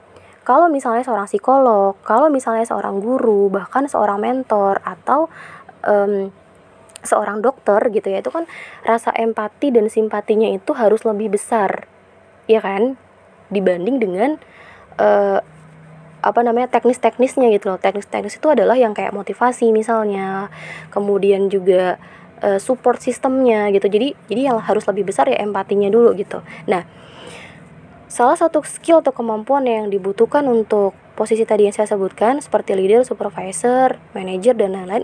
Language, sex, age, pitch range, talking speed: Indonesian, female, 20-39, 205-255 Hz, 135 wpm